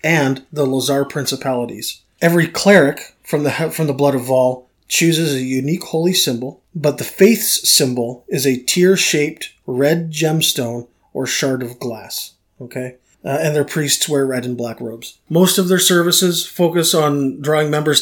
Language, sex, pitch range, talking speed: English, male, 130-160 Hz, 165 wpm